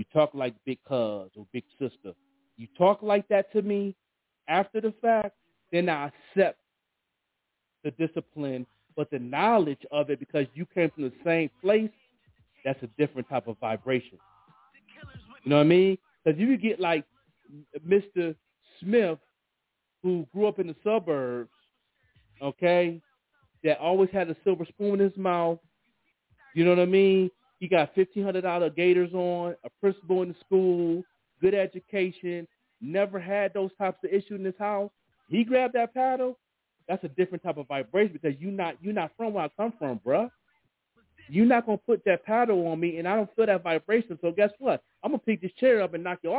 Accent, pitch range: American, 160-205 Hz